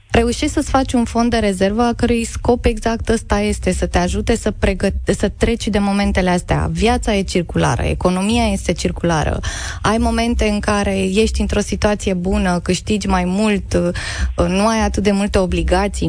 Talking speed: 170 wpm